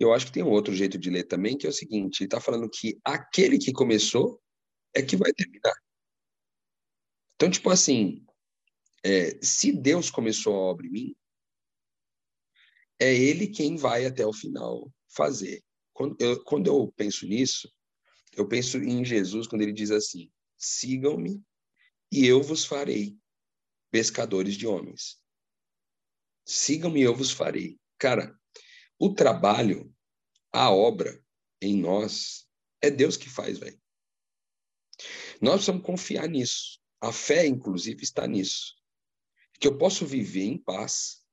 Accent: Brazilian